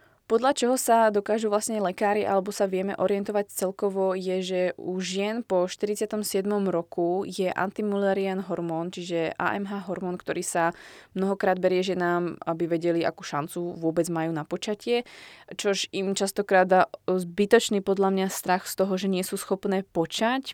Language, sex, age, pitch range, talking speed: Slovak, female, 20-39, 175-200 Hz, 150 wpm